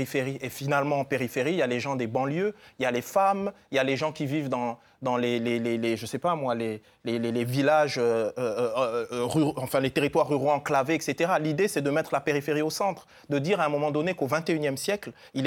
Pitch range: 130-165 Hz